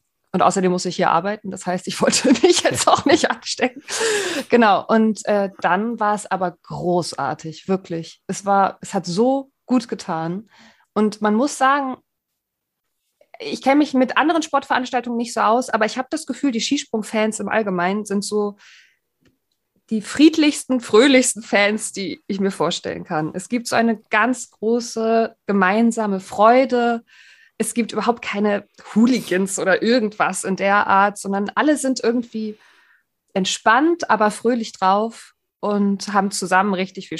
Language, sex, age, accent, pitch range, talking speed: German, female, 20-39, German, 200-260 Hz, 155 wpm